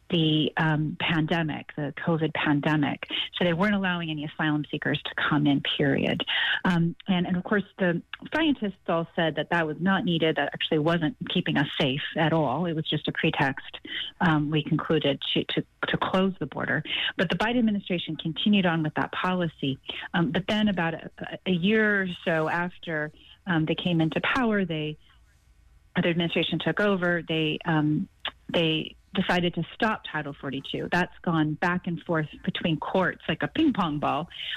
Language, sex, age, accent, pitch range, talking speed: English, female, 30-49, American, 150-185 Hz, 175 wpm